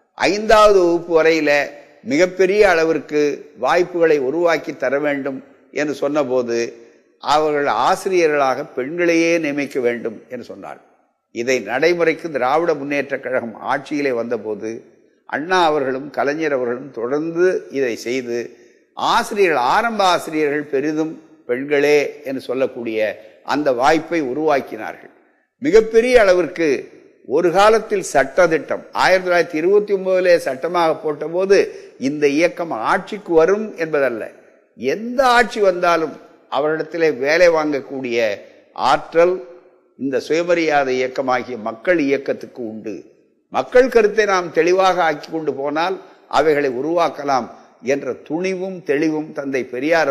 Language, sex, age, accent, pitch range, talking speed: Tamil, male, 50-69, native, 140-190 Hz, 100 wpm